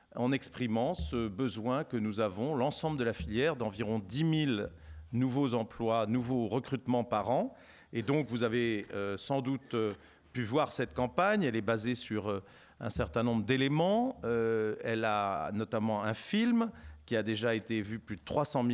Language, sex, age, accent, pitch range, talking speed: French, male, 50-69, French, 110-135 Hz, 175 wpm